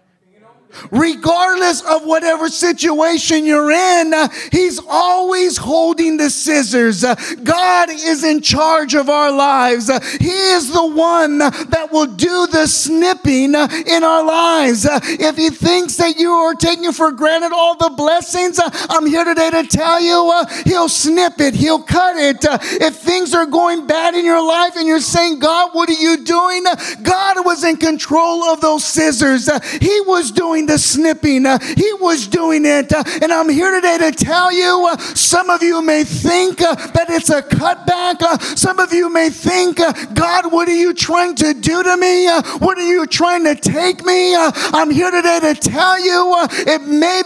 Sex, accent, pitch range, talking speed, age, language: male, American, 310-350 Hz, 180 wpm, 40-59, English